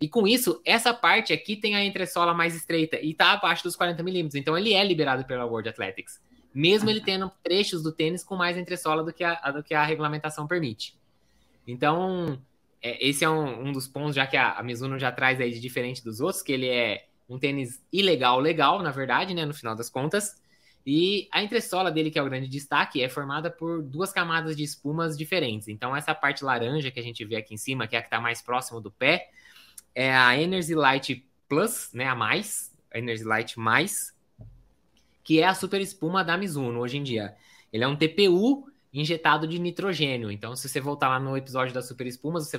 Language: Portuguese